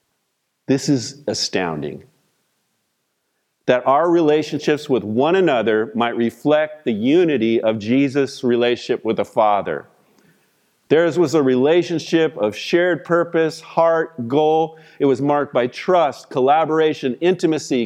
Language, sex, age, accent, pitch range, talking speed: English, male, 50-69, American, 140-190 Hz, 120 wpm